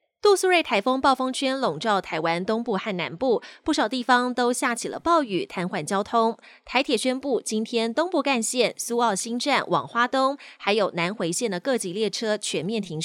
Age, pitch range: 20-39, 195-275 Hz